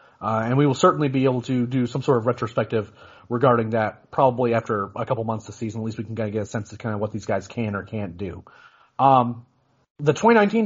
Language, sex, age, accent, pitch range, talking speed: English, male, 30-49, American, 120-155 Hz, 250 wpm